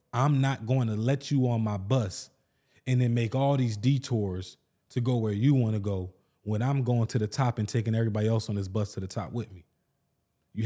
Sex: male